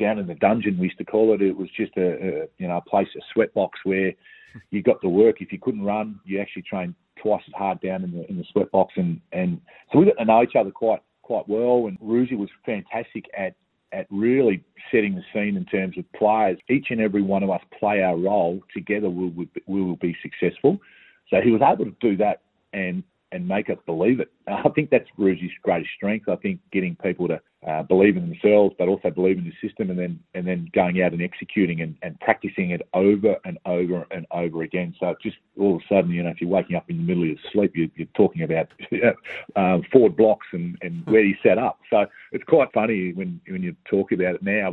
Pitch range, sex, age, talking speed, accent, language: 90-110 Hz, male, 40-59, 240 wpm, Australian, English